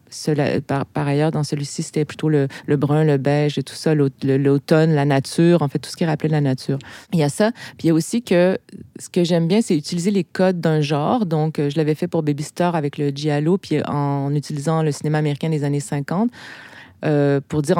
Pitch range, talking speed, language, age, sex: 145-165 Hz, 240 wpm, French, 30-49, female